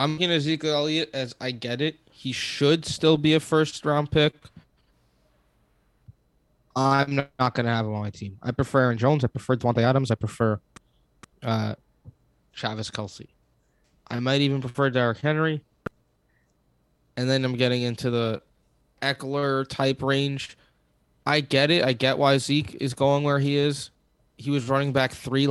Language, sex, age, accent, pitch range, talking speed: English, male, 20-39, American, 120-150 Hz, 160 wpm